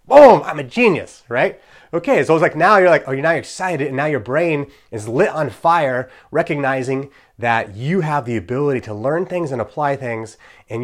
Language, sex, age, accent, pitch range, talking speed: English, male, 30-49, American, 125-175 Hz, 205 wpm